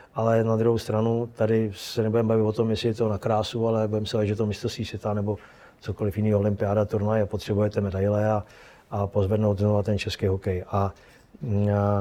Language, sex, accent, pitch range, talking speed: Czech, male, native, 105-120 Hz, 190 wpm